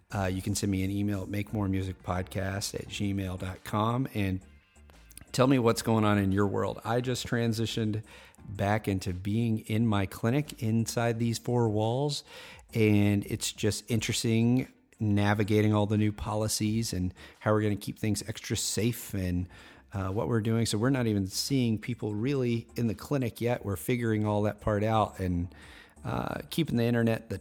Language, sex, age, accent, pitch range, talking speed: English, male, 40-59, American, 95-115 Hz, 175 wpm